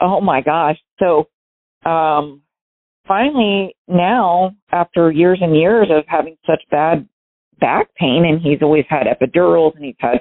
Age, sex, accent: 40-59, female, American